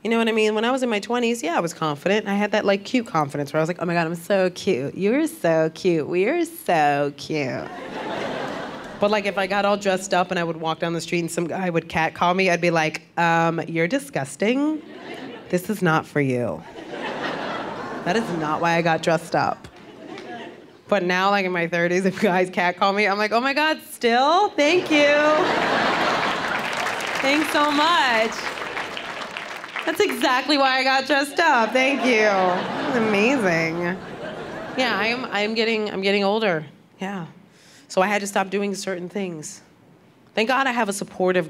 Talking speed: 190 wpm